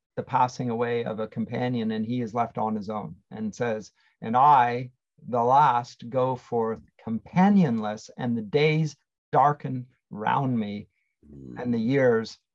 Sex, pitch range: male, 120-155 Hz